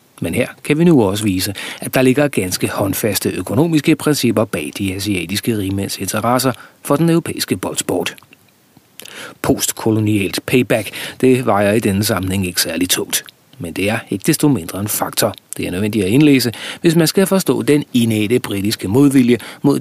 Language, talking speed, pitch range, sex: Danish, 165 wpm, 100-140 Hz, male